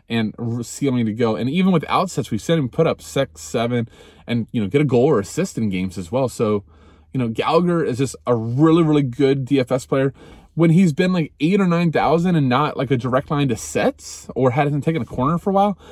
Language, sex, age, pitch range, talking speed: English, male, 20-39, 105-140 Hz, 245 wpm